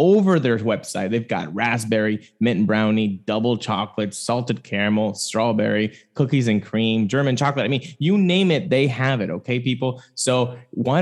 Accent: American